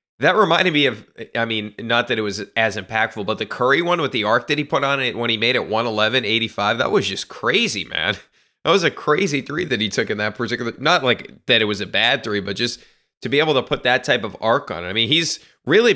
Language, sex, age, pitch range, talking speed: English, male, 30-49, 110-140 Hz, 265 wpm